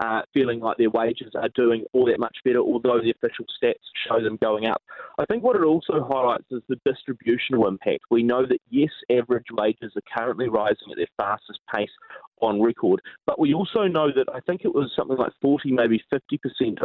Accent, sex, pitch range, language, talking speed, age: Australian, male, 115-160 Hz, English, 205 wpm, 30-49